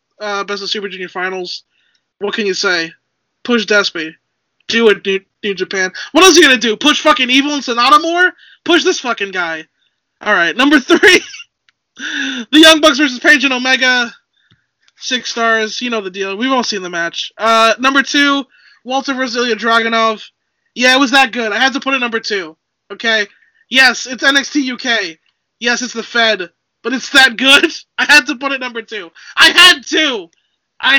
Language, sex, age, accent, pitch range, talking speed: English, male, 20-39, American, 230-300 Hz, 185 wpm